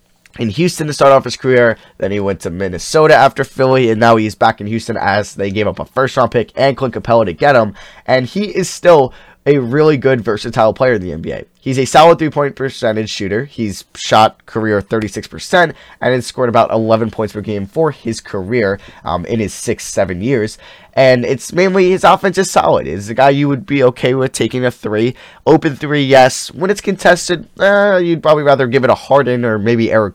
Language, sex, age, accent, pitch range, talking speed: English, male, 10-29, American, 110-140 Hz, 215 wpm